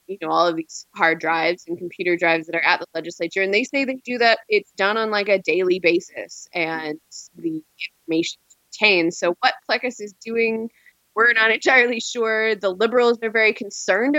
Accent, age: American, 20-39